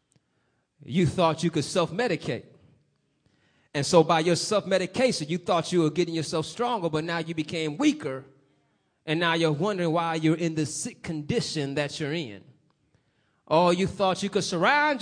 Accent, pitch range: American, 170-240 Hz